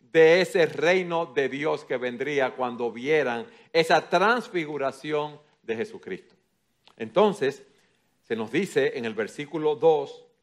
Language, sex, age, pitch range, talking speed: Spanish, male, 50-69, 150-205 Hz, 120 wpm